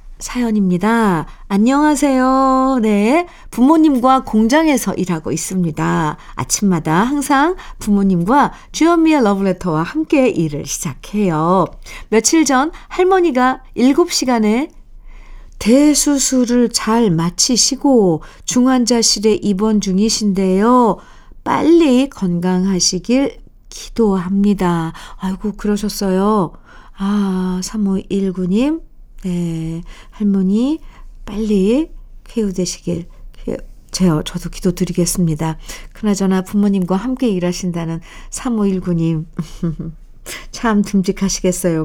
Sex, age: female, 50-69